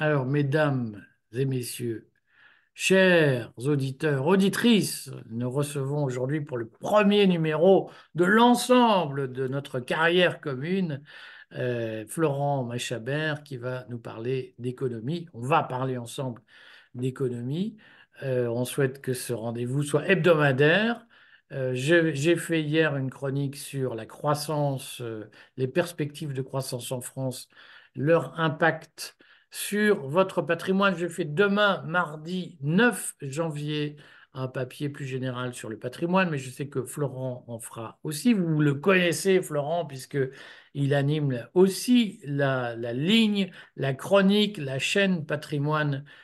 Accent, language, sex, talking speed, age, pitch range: French, French, male, 130 wpm, 50-69, 130-180 Hz